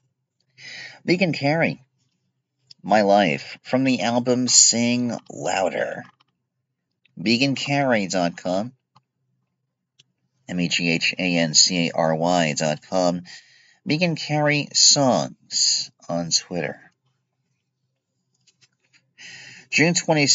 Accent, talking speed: American, 55 wpm